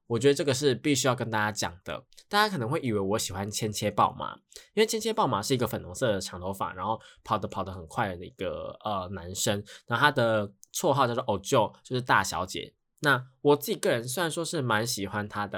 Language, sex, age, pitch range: Chinese, male, 20-39, 105-145 Hz